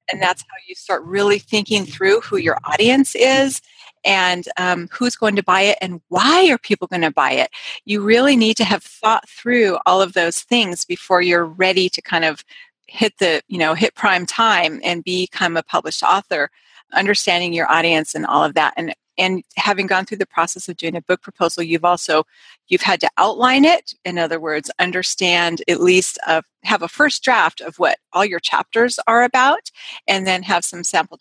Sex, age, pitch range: female, 30-49, 175-230 Hz